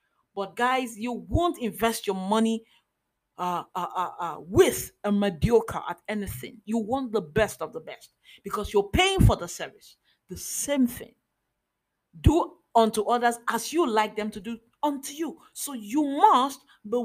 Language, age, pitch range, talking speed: English, 40-59, 220-275 Hz, 165 wpm